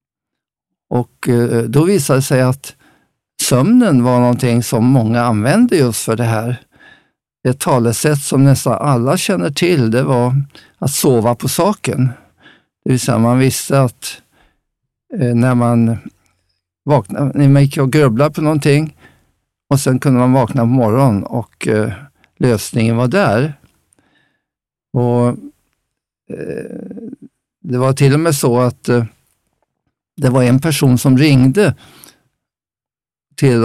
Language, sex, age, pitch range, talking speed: Swedish, male, 50-69, 120-140 Hz, 125 wpm